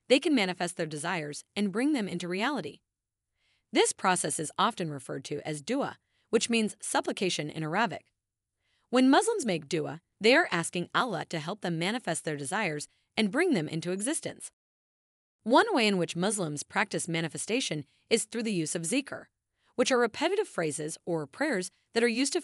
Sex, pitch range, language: female, 155-240 Hz, English